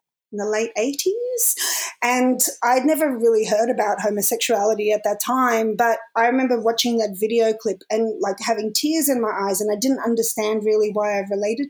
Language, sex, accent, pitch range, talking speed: English, female, Australian, 220-265 Hz, 180 wpm